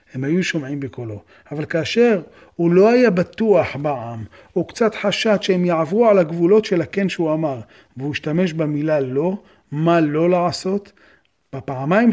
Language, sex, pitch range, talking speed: Hebrew, male, 140-180 Hz, 150 wpm